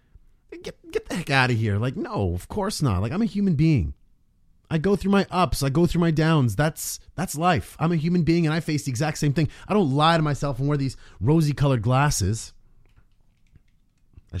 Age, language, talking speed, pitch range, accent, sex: 30-49, English, 220 wpm, 100-145 Hz, American, male